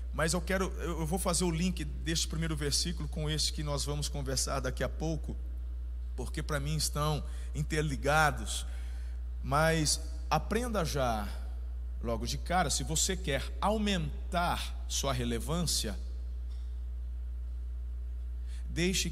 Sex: male